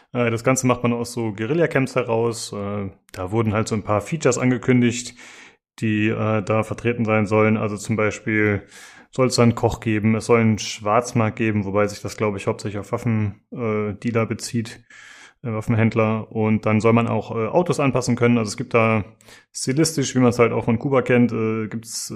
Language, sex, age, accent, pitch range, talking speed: German, male, 20-39, German, 110-125 Hz, 180 wpm